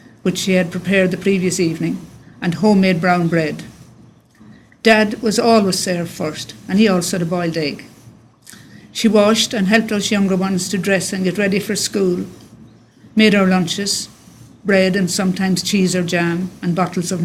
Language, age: English, 50-69